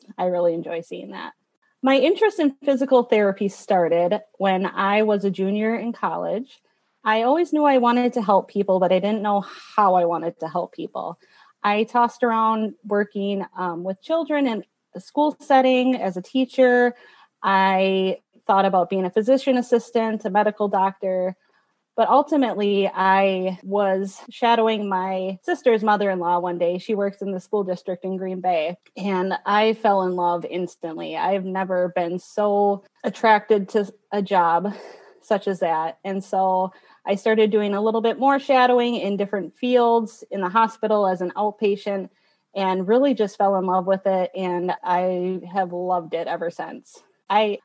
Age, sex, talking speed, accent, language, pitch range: 30-49, female, 165 wpm, American, English, 185-230 Hz